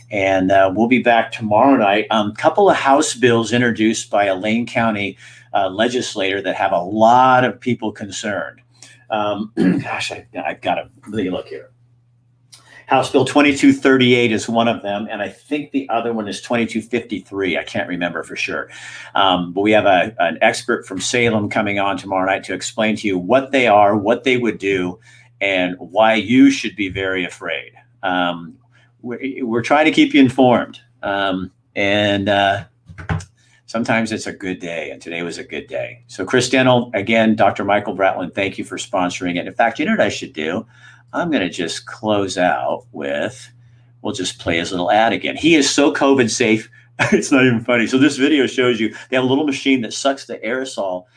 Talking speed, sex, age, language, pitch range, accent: 195 wpm, male, 50-69, English, 100-125 Hz, American